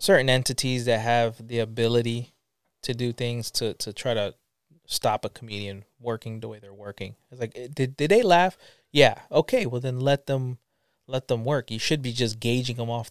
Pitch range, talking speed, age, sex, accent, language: 110-130 Hz, 195 wpm, 20-39, male, American, English